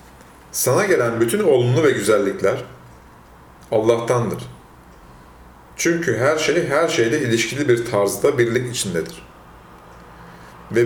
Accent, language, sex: native, Turkish, male